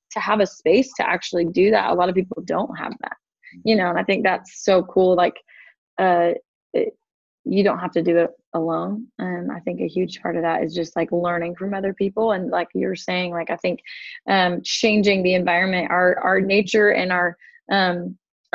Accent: American